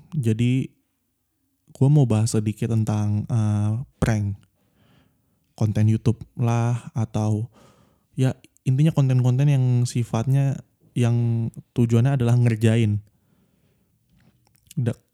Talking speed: 85 wpm